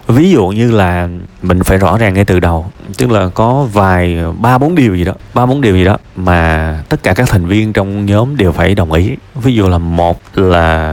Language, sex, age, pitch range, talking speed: Vietnamese, male, 20-39, 95-125 Hz, 230 wpm